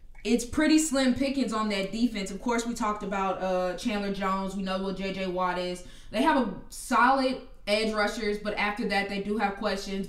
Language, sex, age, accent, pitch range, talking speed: English, female, 10-29, American, 195-235 Hz, 200 wpm